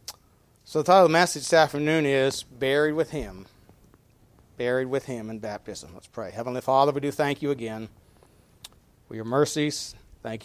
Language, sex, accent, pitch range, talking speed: English, male, American, 110-130 Hz, 170 wpm